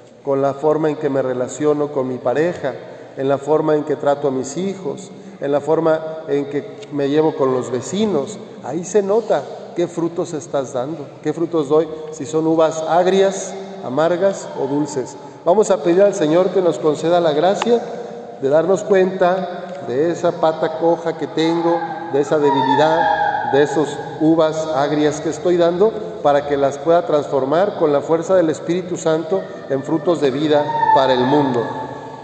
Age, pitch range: 50-69, 145-180 Hz